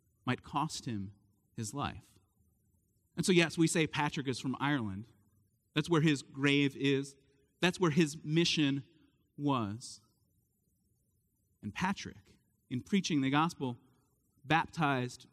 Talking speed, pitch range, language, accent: 120 wpm, 110-165 Hz, English, American